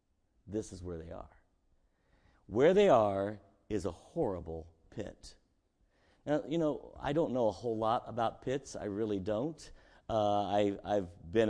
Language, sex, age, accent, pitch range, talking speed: English, male, 50-69, American, 105-170 Hz, 155 wpm